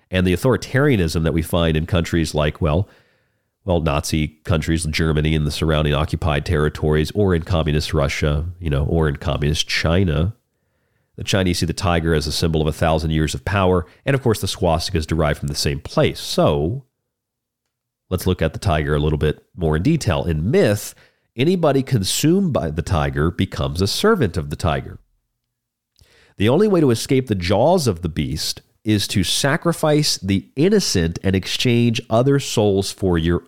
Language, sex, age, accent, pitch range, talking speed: English, male, 40-59, American, 80-110 Hz, 180 wpm